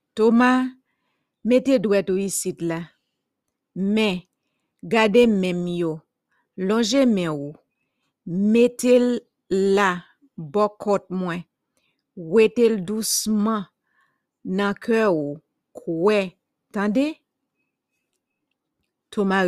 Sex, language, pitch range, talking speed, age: female, English, 180-230 Hz, 75 wpm, 50-69